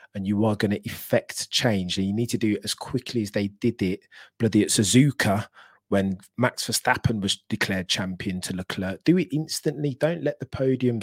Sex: male